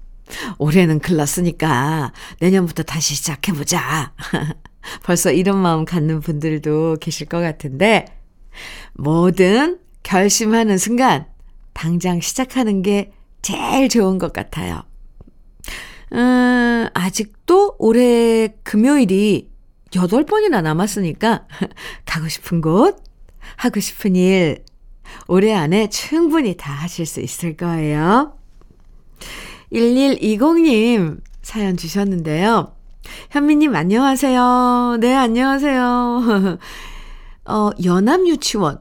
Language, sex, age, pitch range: Korean, female, 50-69, 165-245 Hz